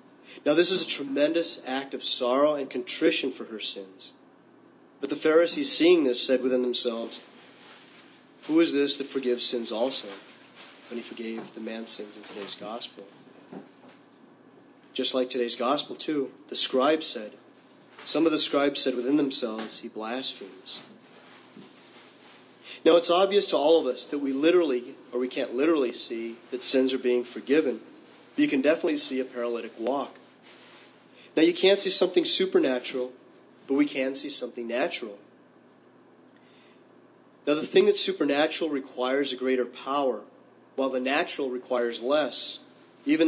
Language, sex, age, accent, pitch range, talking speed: English, male, 30-49, American, 125-160 Hz, 150 wpm